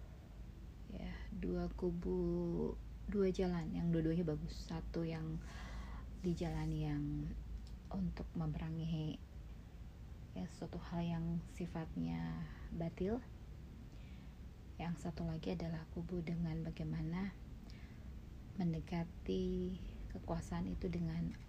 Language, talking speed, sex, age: Indonesian, 90 wpm, female, 30-49